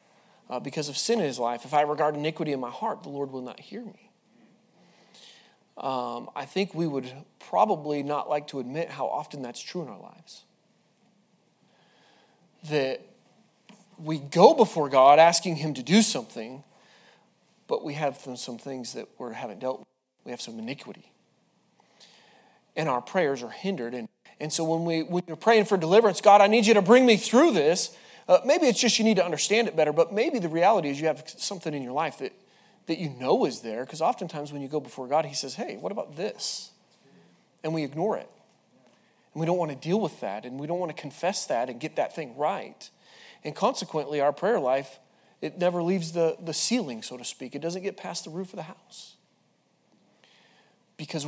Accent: American